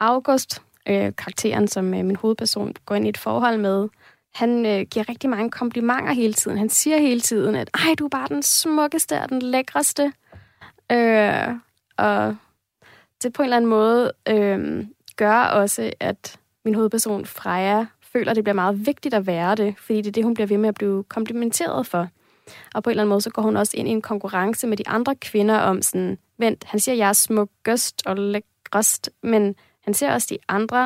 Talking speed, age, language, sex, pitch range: 200 wpm, 20-39, Danish, female, 200-240 Hz